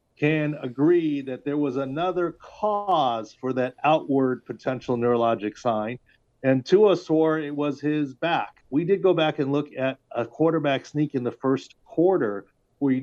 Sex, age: male, 40-59